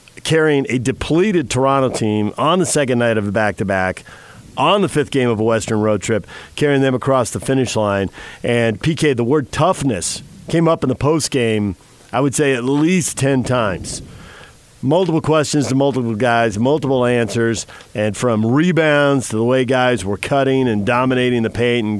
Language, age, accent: English, 50-69, American